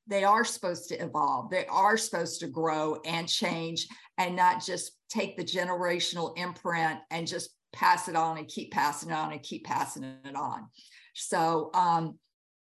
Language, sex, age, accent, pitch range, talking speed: English, female, 50-69, American, 170-225 Hz, 170 wpm